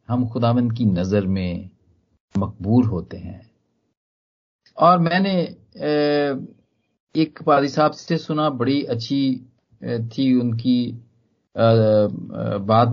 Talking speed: 90 wpm